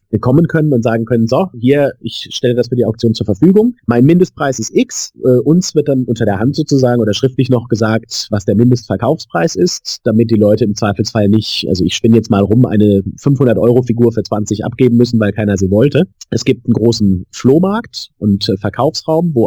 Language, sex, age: German, male, 30-49